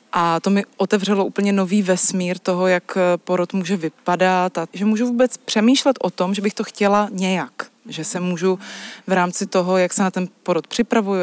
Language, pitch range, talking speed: Czech, 180-210 Hz, 190 wpm